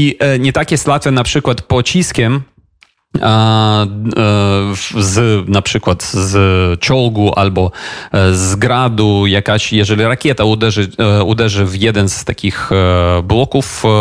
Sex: male